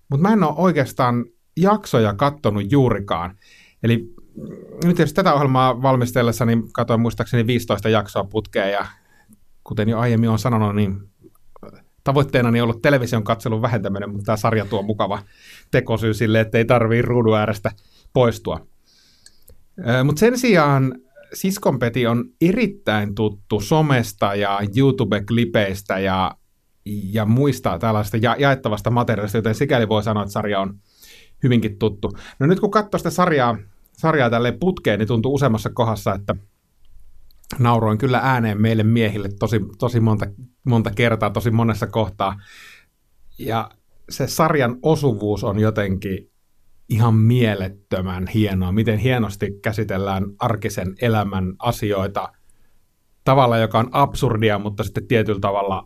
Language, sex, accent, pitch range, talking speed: Finnish, male, native, 105-125 Hz, 130 wpm